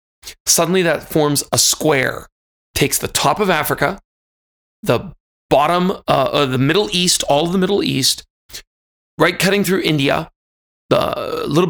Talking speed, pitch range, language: 145 wpm, 130-160 Hz, English